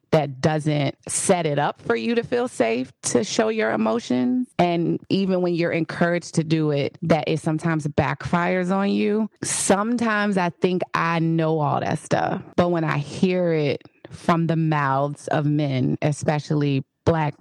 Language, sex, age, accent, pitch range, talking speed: English, female, 30-49, American, 150-170 Hz, 165 wpm